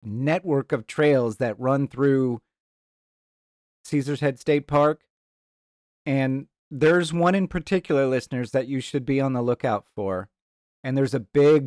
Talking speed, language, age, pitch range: 145 wpm, English, 40-59, 120-150 Hz